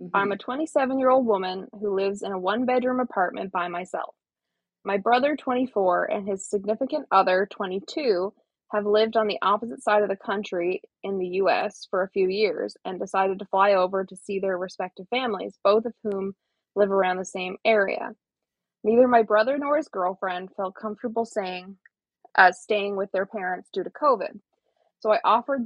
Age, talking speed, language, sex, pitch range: 20-39, 170 wpm, English, female, 190-230 Hz